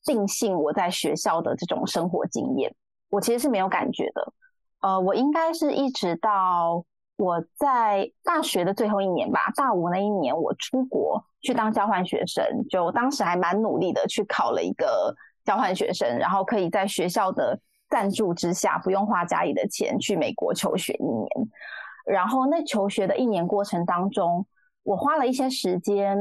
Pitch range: 185-245 Hz